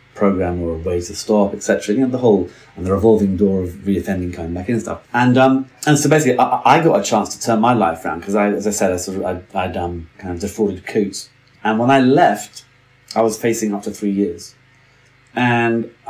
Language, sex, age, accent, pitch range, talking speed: English, male, 30-49, British, 100-125 Hz, 240 wpm